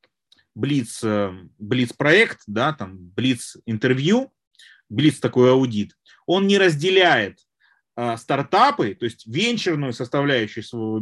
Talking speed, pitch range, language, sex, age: 95 wpm, 125-170 Hz, Russian, male, 30-49